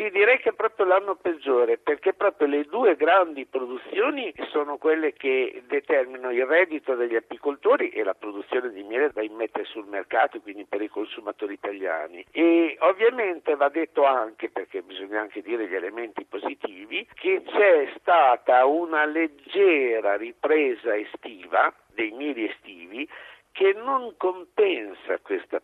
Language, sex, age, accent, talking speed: Italian, male, 60-79, native, 145 wpm